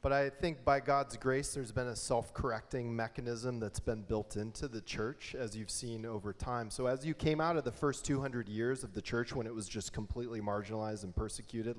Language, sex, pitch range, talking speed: English, male, 110-140 Hz, 220 wpm